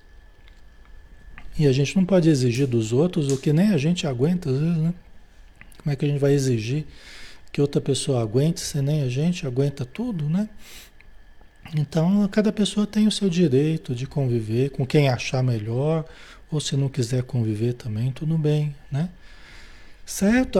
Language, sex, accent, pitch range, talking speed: Portuguese, male, Brazilian, 130-175 Hz, 170 wpm